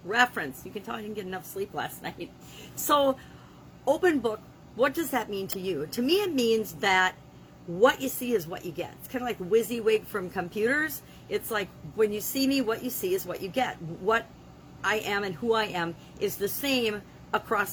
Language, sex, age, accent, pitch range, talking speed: English, female, 50-69, American, 175-225 Hz, 215 wpm